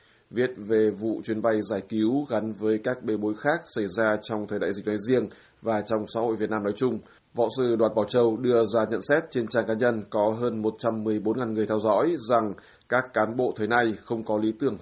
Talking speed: 235 wpm